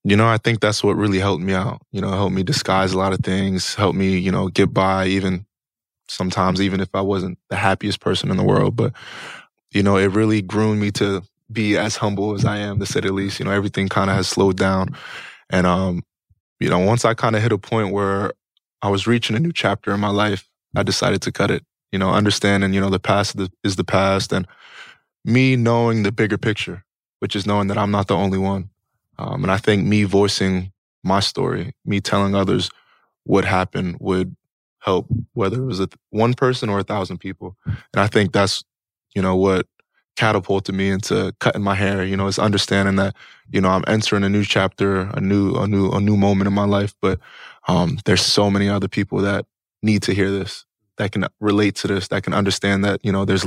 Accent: American